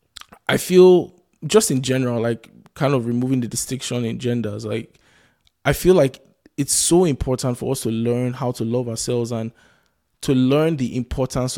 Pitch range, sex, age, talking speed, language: 115-140 Hz, male, 20-39, 170 wpm, English